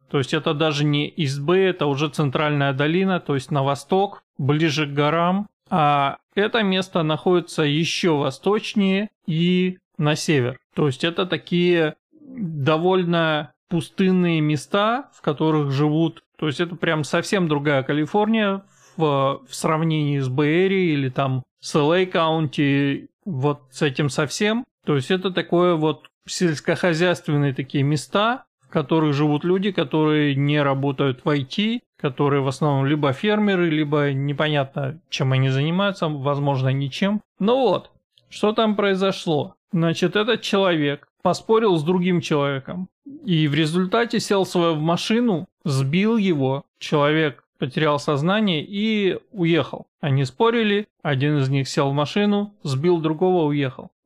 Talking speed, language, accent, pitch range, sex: 135 wpm, Russian, native, 145-190 Hz, male